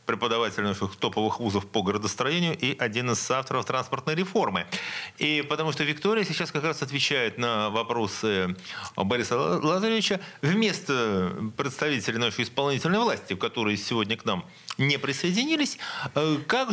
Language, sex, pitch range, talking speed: Russian, male, 120-175 Hz, 130 wpm